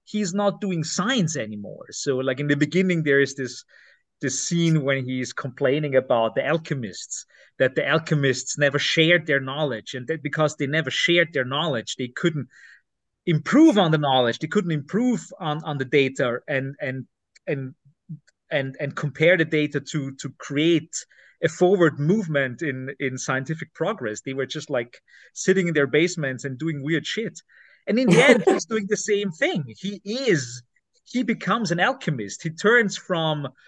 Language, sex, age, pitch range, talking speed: English, male, 30-49, 140-175 Hz, 175 wpm